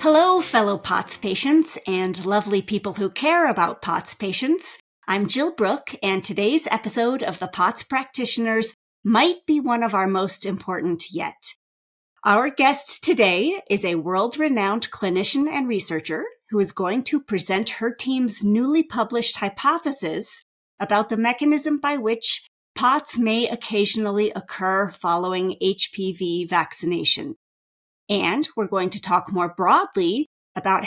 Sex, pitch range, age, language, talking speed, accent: female, 190-265 Hz, 40-59, English, 135 wpm, American